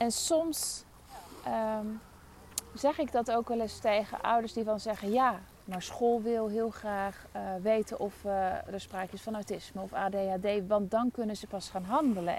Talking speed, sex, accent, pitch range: 180 wpm, female, Dutch, 190-245 Hz